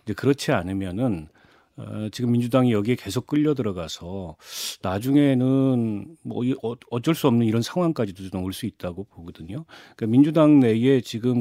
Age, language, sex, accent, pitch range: 40-59, Korean, male, native, 100-135 Hz